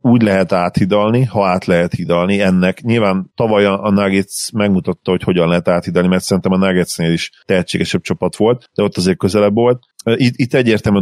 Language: Hungarian